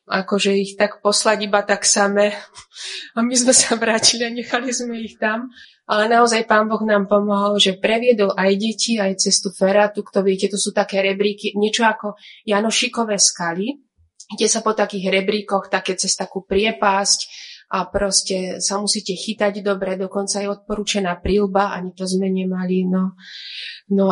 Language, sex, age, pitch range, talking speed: Slovak, female, 20-39, 190-205 Hz, 160 wpm